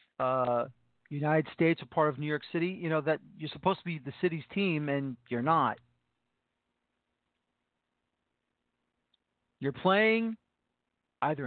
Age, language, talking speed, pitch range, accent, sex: 40-59, English, 130 wpm, 145-185 Hz, American, male